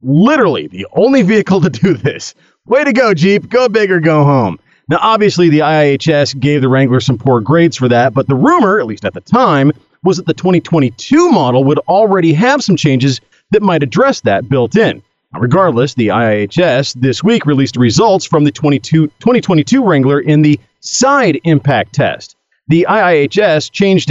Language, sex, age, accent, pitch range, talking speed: English, male, 40-59, American, 125-175 Hz, 175 wpm